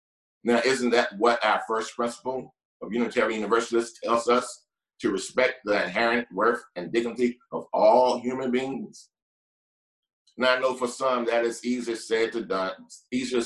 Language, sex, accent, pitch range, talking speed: English, male, American, 105-130 Hz, 140 wpm